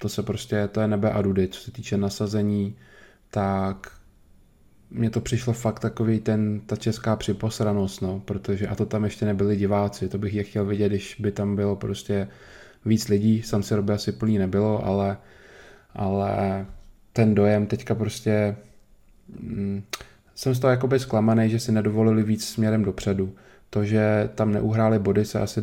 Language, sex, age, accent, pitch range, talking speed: Czech, male, 20-39, native, 100-110 Hz, 170 wpm